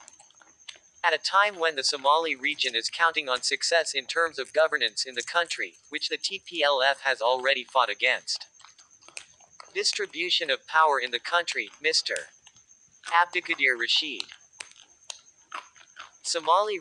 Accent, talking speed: American, 125 wpm